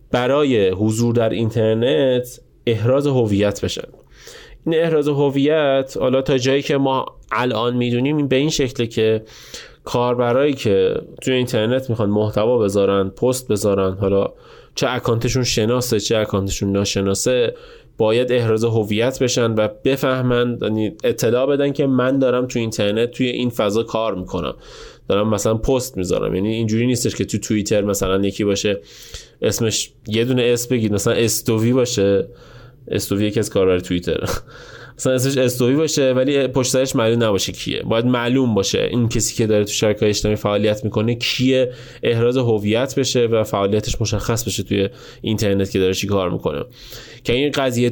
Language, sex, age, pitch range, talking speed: Persian, male, 20-39, 105-130 Hz, 155 wpm